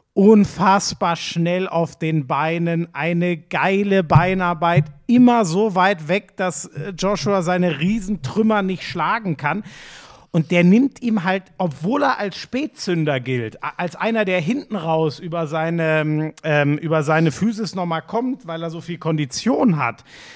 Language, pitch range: German, 160-205 Hz